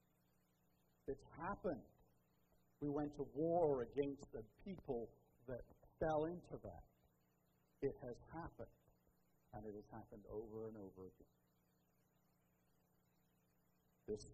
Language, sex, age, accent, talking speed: English, male, 60-79, American, 105 wpm